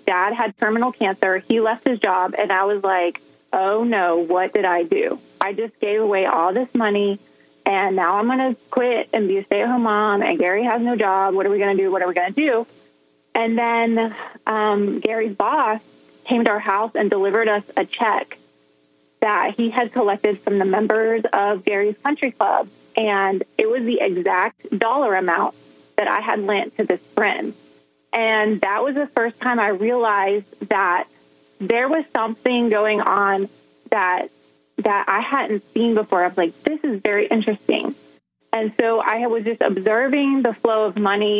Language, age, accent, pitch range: English, 20-39, American, 195-235 Hz